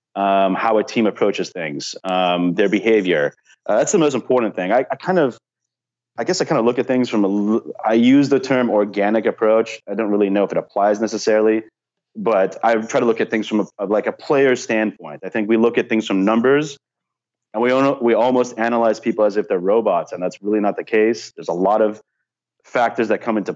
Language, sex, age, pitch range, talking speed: English, male, 30-49, 100-115 Hz, 225 wpm